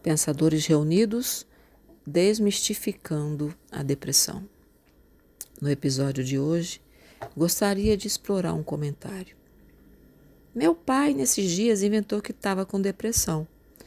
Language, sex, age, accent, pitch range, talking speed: Portuguese, female, 40-59, Brazilian, 145-175 Hz, 100 wpm